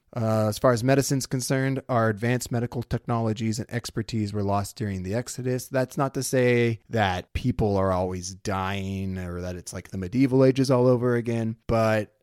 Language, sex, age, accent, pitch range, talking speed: English, male, 30-49, American, 100-125 Hz, 180 wpm